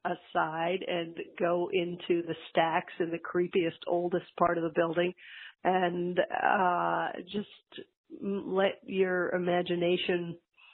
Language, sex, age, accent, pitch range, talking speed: English, female, 40-59, American, 170-205 Hz, 110 wpm